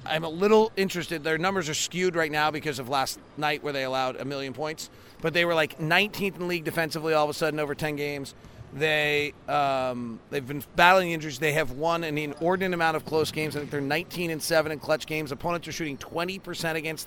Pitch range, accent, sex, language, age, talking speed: 145-175 Hz, American, male, English, 30-49, 225 wpm